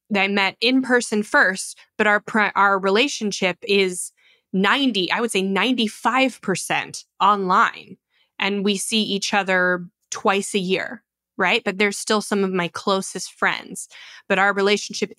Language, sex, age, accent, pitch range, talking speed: English, female, 20-39, American, 185-225 Hz, 145 wpm